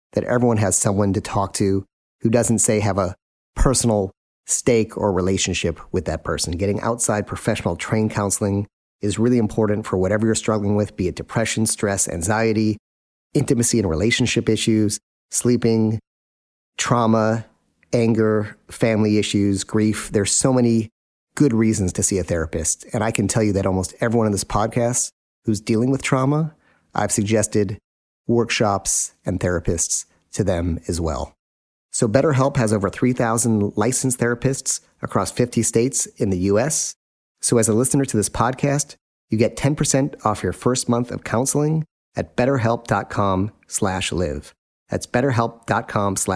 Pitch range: 100-120 Hz